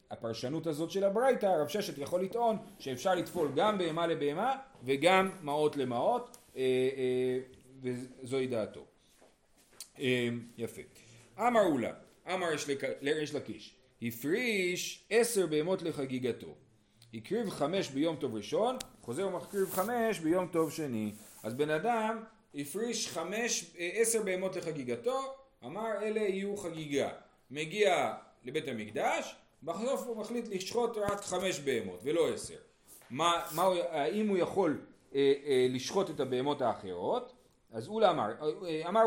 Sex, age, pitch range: male, 40-59, 135-205 Hz